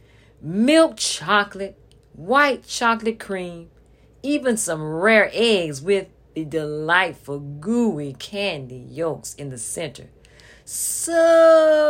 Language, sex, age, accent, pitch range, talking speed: English, female, 50-69, American, 165-250 Hz, 95 wpm